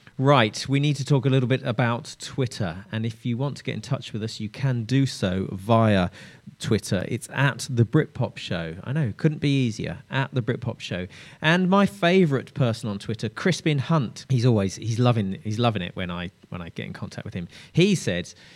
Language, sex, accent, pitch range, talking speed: English, male, British, 110-145 Hz, 215 wpm